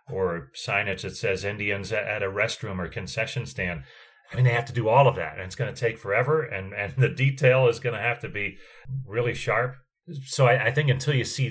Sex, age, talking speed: male, 30-49, 235 wpm